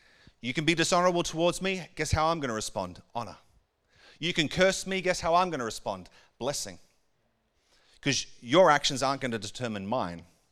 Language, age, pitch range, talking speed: English, 40-59, 115-165 Hz, 185 wpm